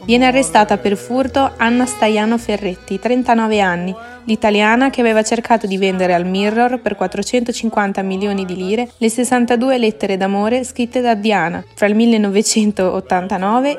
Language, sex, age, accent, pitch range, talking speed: Italian, female, 20-39, native, 195-240 Hz, 140 wpm